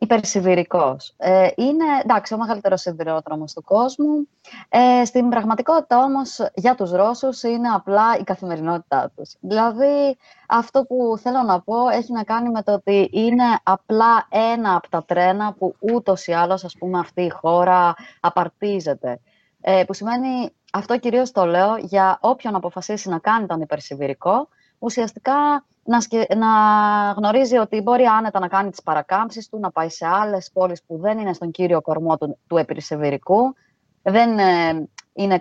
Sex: female